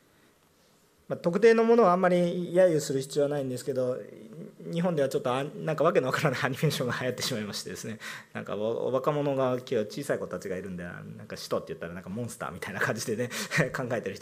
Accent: native